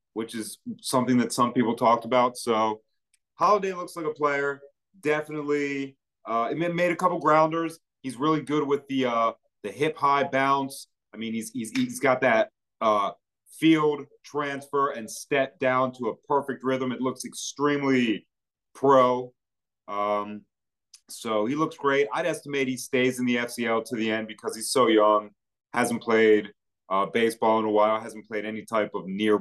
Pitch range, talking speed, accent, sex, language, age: 110-140 Hz, 170 wpm, American, male, English, 30-49